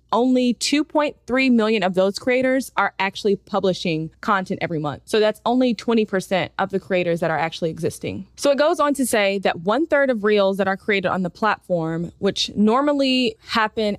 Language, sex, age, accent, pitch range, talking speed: English, female, 20-39, American, 185-225 Hz, 185 wpm